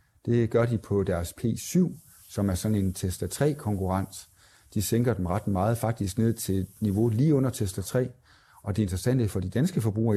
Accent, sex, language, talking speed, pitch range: native, male, Danish, 195 wpm, 95-120 Hz